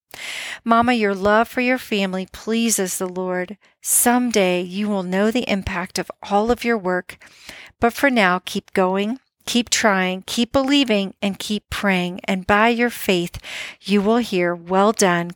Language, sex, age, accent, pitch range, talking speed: English, female, 40-59, American, 190-225 Hz, 165 wpm